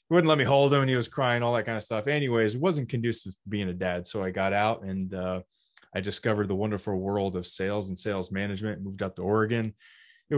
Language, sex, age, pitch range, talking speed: English, male, 20-39, 100-120 Hz, 250 wpm